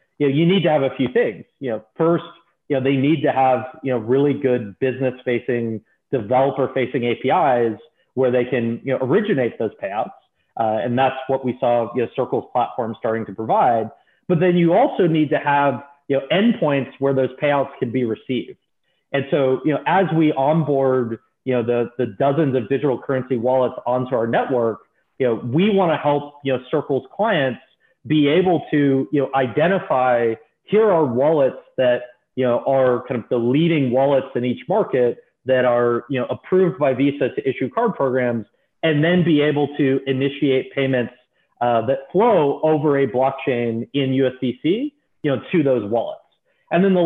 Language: English